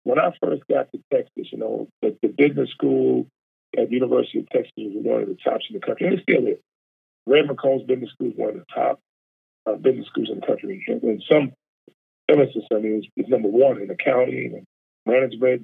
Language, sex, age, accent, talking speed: English, male, 40-59, American, 220 wpm